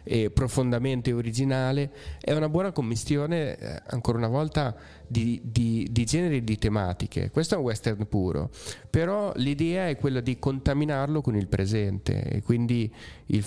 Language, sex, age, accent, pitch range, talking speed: Italian, male, 30-49, native, 105-130 Hz, 150 wpm